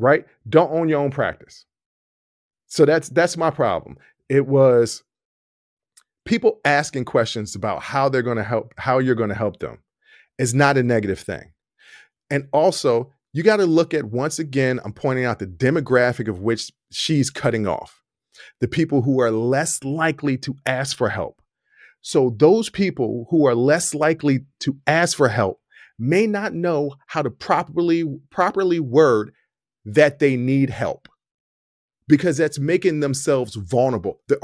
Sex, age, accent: male, 40-59, American